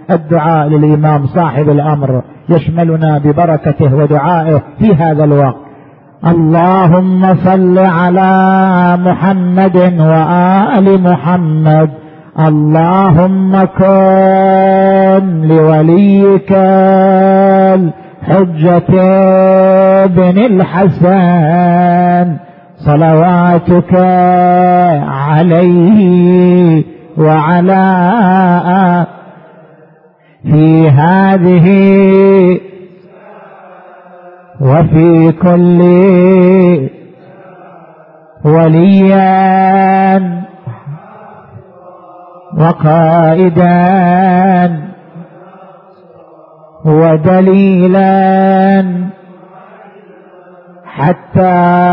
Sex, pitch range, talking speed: male, 160-190 Hz, 40 wpm